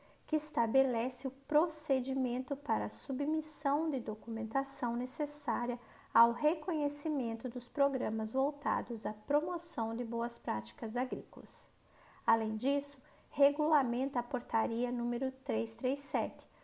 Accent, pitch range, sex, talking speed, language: Brazilian, 235-285 Hz, female, 95 wpm, Portuguese